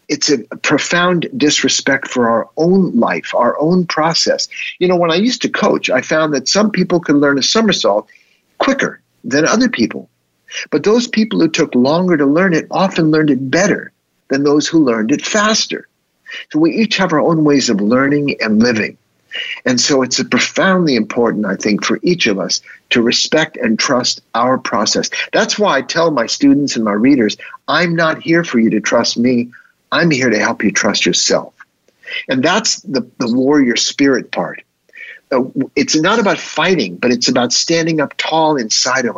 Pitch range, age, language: 135-215 Hz, 50-69, English